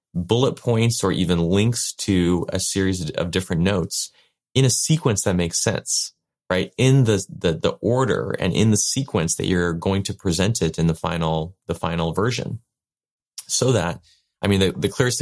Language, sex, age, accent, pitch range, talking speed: English, male, 30-49, American, 85-120 Hz, 180 wpm